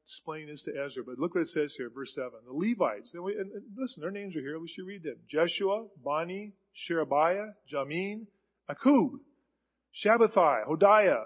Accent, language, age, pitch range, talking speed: American, English, 40-59, 160-230 Hz, 165 wpm